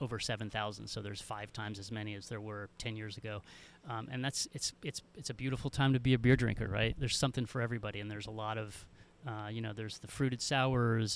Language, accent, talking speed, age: English, American, 245 wpm, 30-49